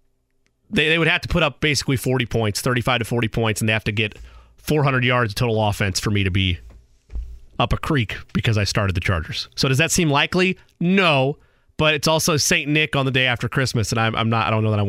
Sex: male